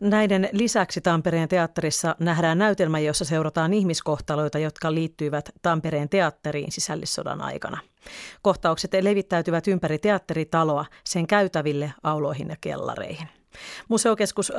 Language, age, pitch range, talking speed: Finnish, 30-49, 160-195 Hz, 105 wpm